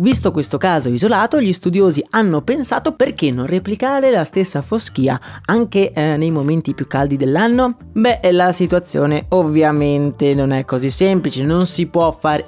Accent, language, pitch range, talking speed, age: native, Italian, 140-185 Hz, 160 wpm, 20-39